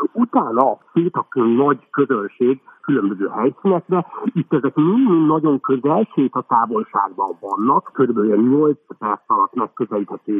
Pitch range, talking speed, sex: 110-150 Hz, 125 wpm, male